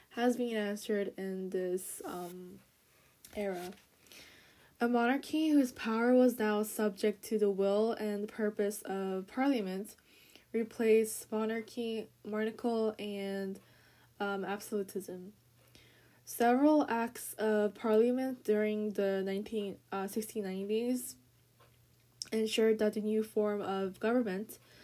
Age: 10-29